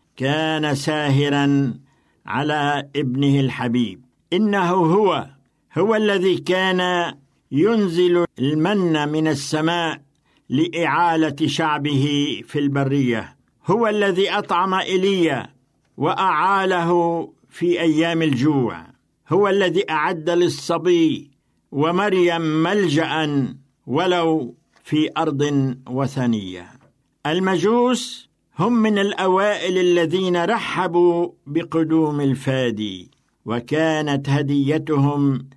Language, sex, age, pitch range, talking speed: Arabic, male, 60-79, 135-170 Hz, 80 wpm